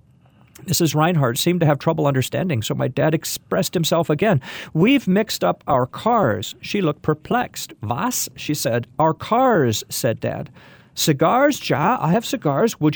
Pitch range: 125-180 Hz